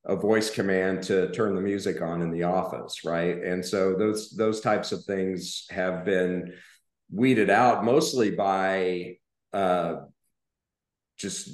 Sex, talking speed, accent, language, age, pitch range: male, 140 wpm, American, English, 40-59, 90-100 Hz